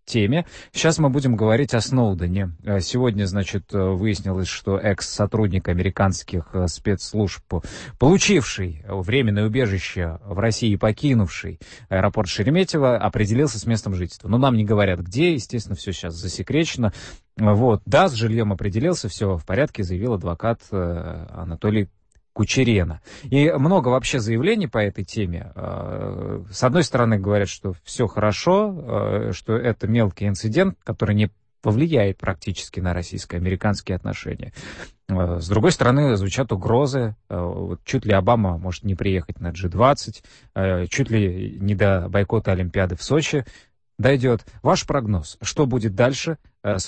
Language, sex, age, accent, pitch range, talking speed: Russian, male, 30-49, native, 95-125 Hz, 130 wpm